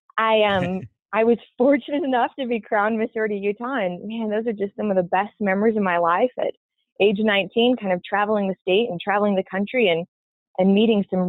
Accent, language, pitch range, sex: American, English, 185-225 Hz, female